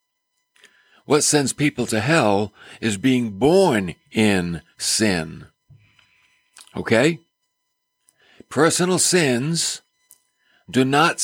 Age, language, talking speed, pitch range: 60-79, English, 80 wpm, 115-175 Hz